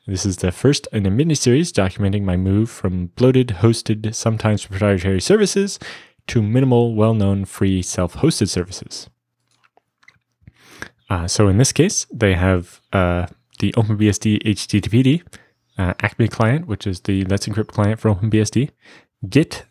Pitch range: 95-120 Hz